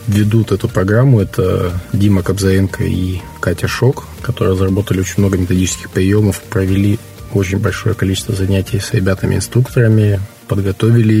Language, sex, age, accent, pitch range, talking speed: Russian, male, 20-39, native, 95-115 Hz, 130 wpm